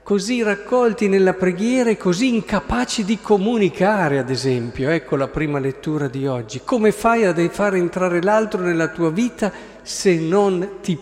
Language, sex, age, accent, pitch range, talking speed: Italian, male, 50-69, native, 155-200 Hz, 160 wpm